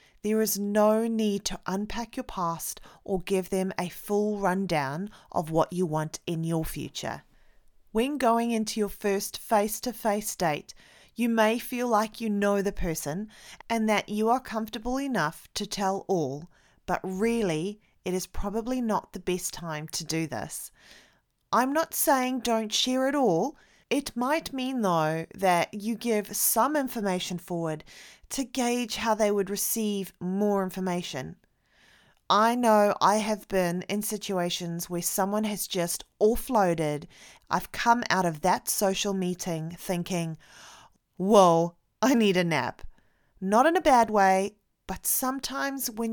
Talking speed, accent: 150 wpm, Australian